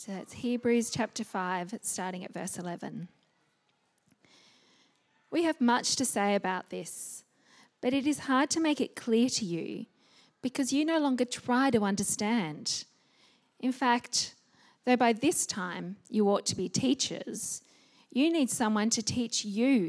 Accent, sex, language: Australian, female, English